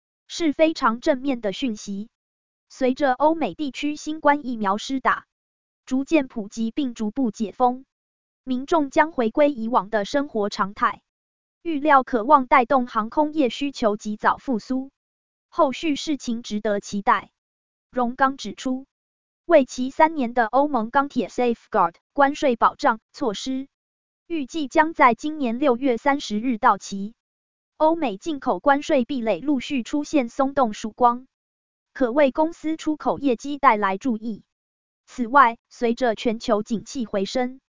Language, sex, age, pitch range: Chinese, female, 20-39, 235-290 Hz